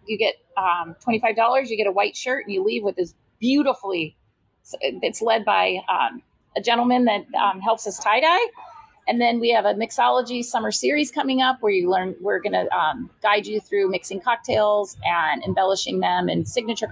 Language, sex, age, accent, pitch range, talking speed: English, female, 30-49, American, 195-255 Hz, 190 wpm